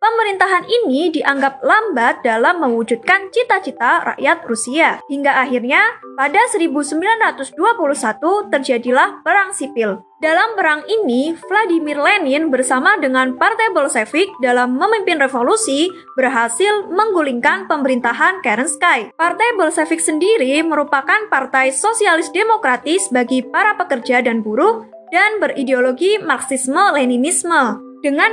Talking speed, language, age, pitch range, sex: 100 wpm, Indonesian, 20-39, 265-395 Hz, female